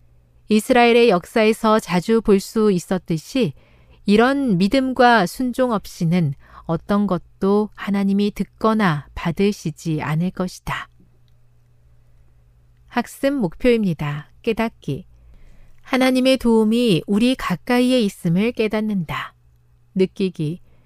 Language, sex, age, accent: Korean, female, 40-59, native